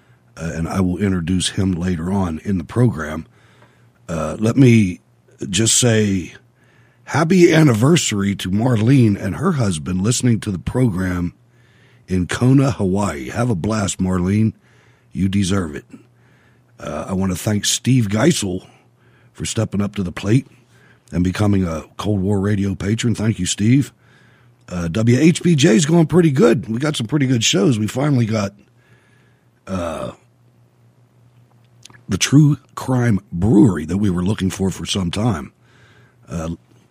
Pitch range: 95-125 Hz